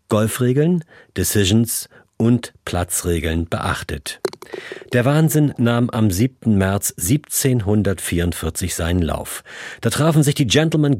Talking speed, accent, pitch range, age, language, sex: 105 wpm, German, 90-125 Hz, 40-59, German, male